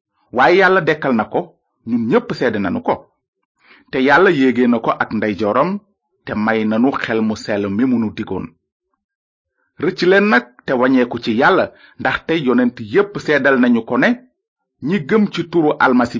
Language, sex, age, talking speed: French, male, 30-49, 100 wpm